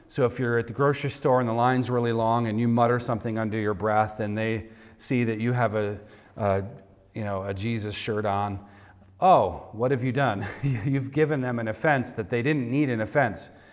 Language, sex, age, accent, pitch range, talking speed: English, male, 40-59, American, 110-150 Hz, 200 wpm